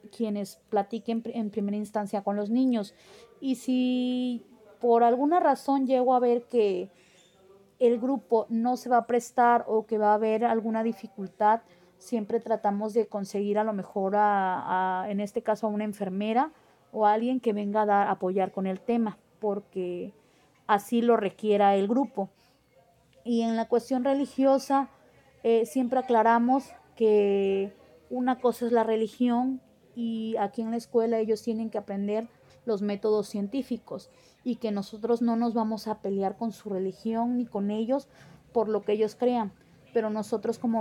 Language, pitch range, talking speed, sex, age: Spanish, 205-235 Hz, 165 wpm, female, 20-39